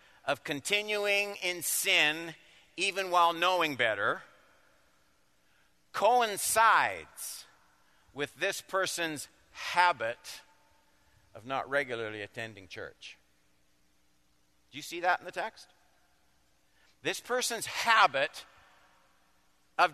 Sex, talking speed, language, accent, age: male, 85 wpm, English, American, 50-69